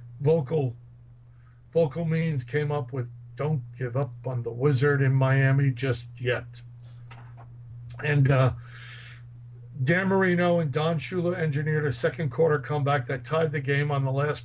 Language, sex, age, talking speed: English, male, 60-79, 145 wpm